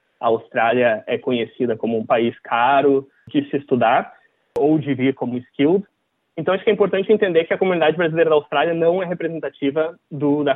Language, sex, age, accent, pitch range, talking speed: Portuguese, male, 20-39, Brazilian, 130-175 Hz, 180 wpm